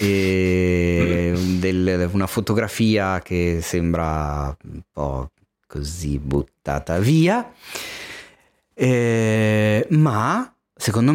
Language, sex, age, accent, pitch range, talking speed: Italian, male, 30-49, native, 90-145 Hz, 75 wpm